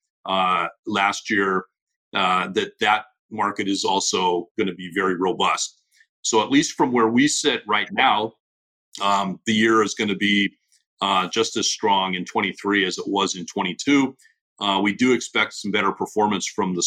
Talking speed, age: 185 wpm, 40-59